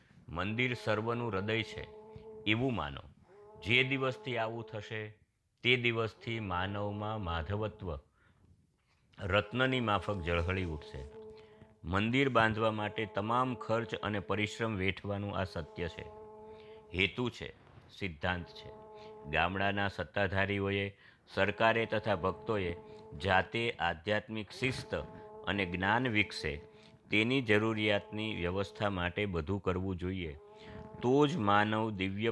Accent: native